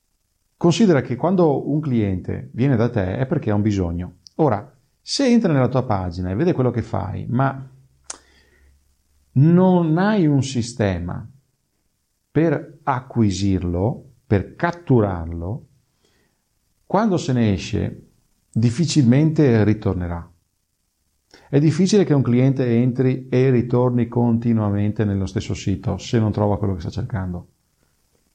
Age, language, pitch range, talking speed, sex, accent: 40-59, Italian, 95-130 Hz, 125 wpm, male, native